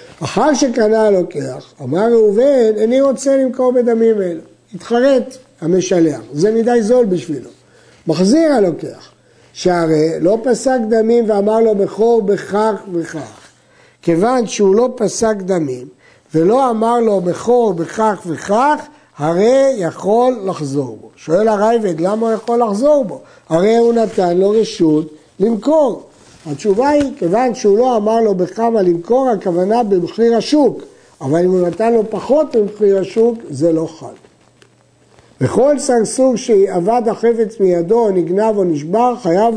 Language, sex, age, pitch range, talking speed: Hebrew, male, 60-79, 180-235 Hz, 130 wpm